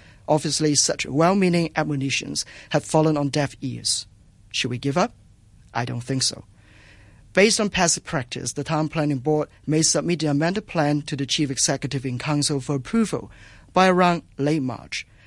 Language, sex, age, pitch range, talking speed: English, male, 50-69, 125-155 Hz, 165 wpm